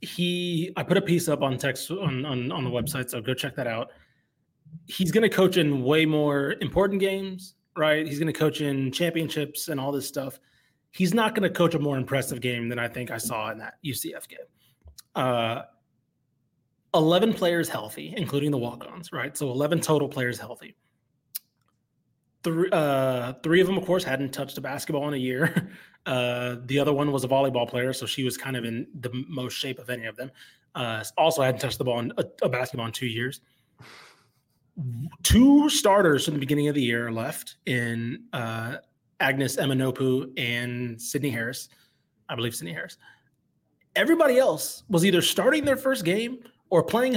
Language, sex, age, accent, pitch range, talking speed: English, male, 20-39, American, 130-175 Hz, 185 wpm